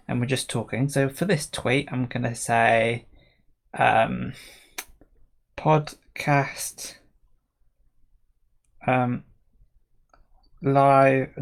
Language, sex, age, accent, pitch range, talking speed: English, male, 20-39, British, 110-135 Hz, 80 wpm